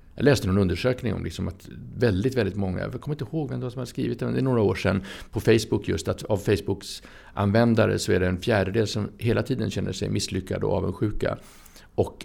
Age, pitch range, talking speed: 60-79, 95-115 Hz, 220 wpm